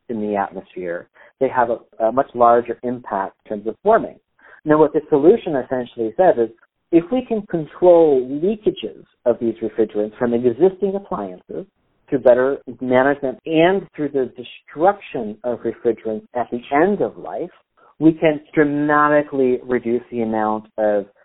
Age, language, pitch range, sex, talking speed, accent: 50-69, English, 110-145 Hz, male, 150 wpm, American